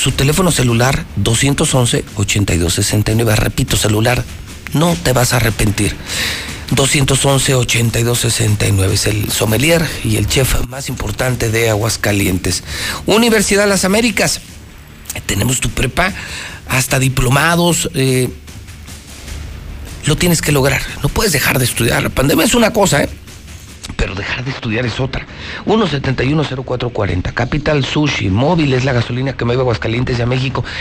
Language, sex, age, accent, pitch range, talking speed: Spanish, male, 50-69, Mexican, 105-145 Hz, 130 wpm